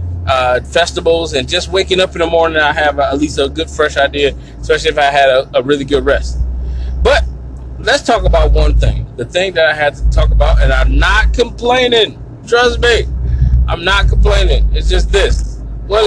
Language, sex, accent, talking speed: English, male, American, 200 wpm